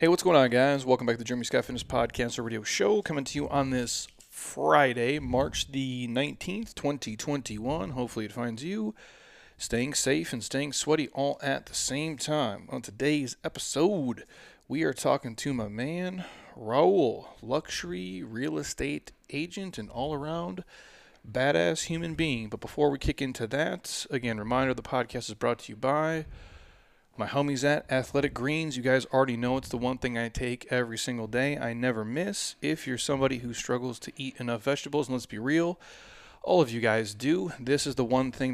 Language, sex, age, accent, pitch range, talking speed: English, male, 30-49, American, 120-145 Hz, 185 wpm